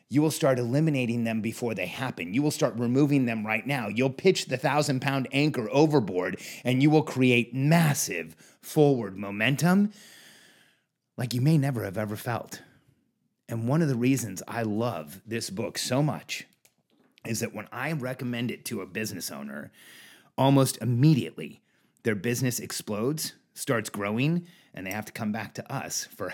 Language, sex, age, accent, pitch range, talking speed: English, male, 30-49, American, 120-160 Hz, 165 wpm